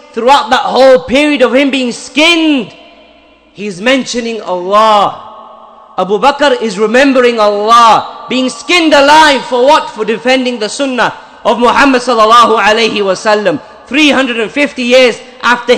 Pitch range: 210-280 Hz